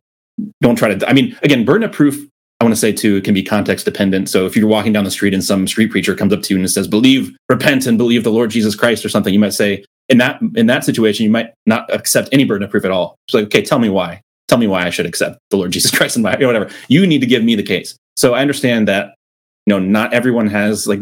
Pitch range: 95-115 Hz